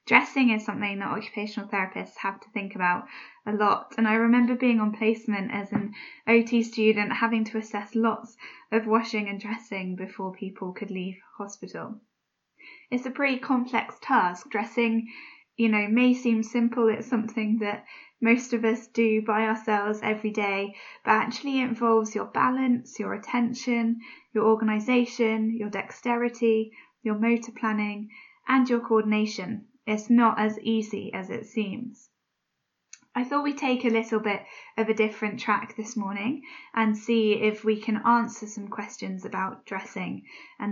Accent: British